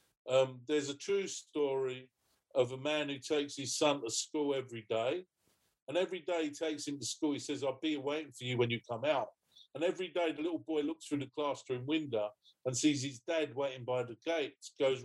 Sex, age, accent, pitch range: male, 50-69, British, 130-180 Hz